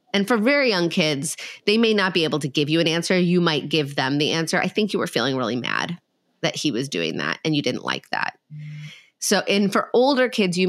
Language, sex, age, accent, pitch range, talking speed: English, female, 30-49, American, 150-200 Hz, 245 wpm